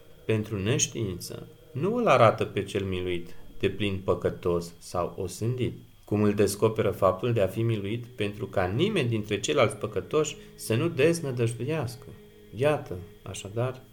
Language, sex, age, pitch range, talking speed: Romanian, male, 40-59, 105-130 Hz, 140 wpm